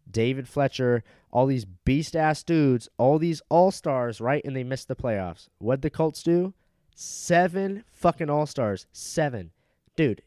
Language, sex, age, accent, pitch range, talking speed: English, male, 20-39, American, 105-140 Hz, 140 wpm